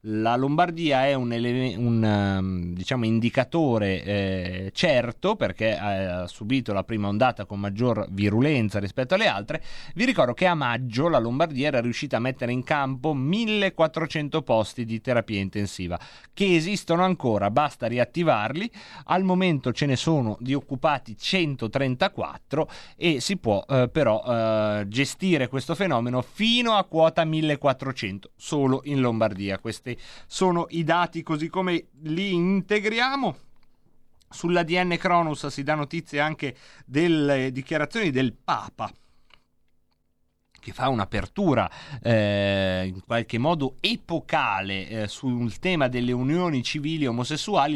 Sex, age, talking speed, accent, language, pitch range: male, 30-49, 130 wpm, native, Italian, 115-165 Hz